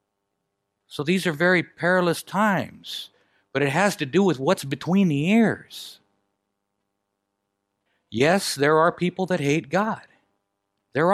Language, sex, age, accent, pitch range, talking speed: English, male, 60-79, American, 140-200 Hz, 130 wpm